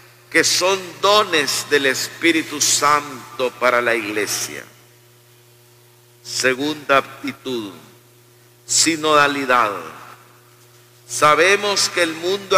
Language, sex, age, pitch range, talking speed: Spanish, male, 50-69, 120-185 Hz, 75 wpm